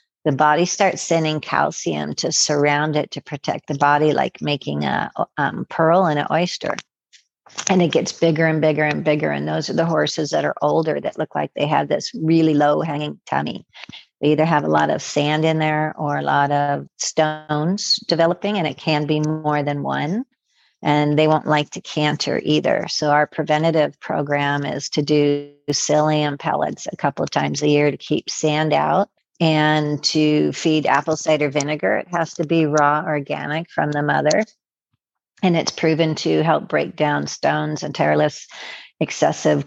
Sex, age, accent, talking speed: female, 50-69, American, 180 wpm